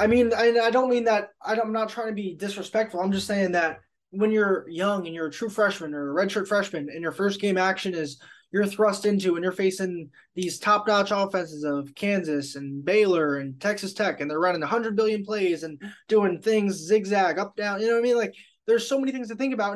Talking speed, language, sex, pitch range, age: 230 wpm, English, male, 175-220 Hz, 20-39